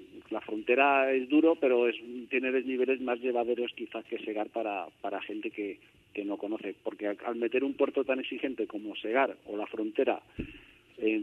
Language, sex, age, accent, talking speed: Spanish, male, 50-69, Spanish, 180 wpm